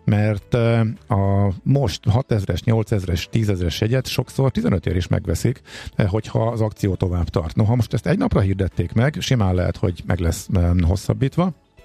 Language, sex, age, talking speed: Hungarian, male, 50-69, 170 wpm